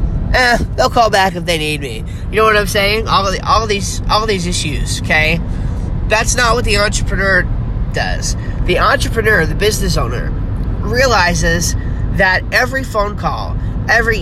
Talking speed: 175 wpm